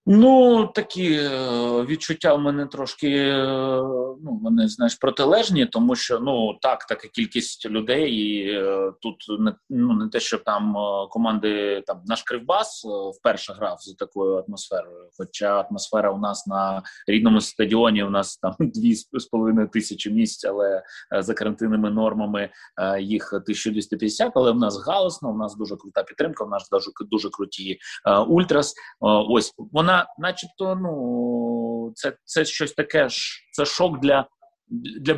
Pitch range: 105-160 Hz